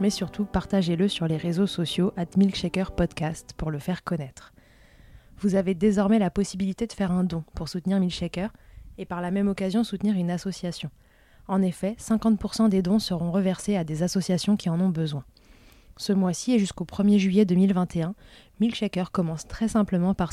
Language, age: French, 20-39